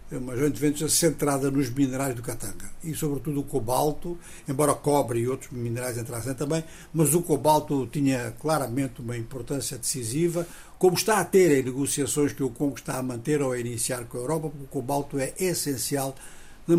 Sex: male